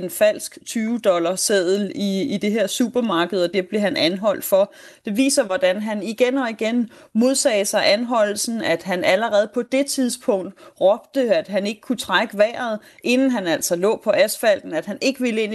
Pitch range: 205-265 Hz